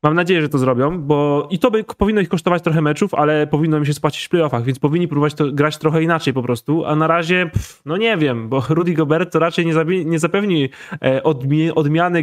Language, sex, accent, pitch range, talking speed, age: Polish, male, native, 140-170 Hz, 240 wpm, 20-39